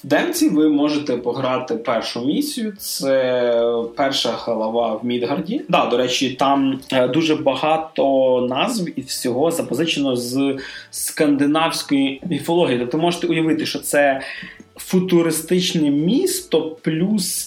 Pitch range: 125-170 Hz